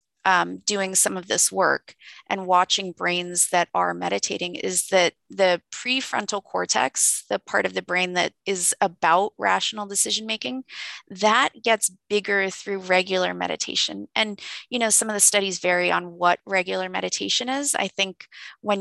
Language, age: English, 20-39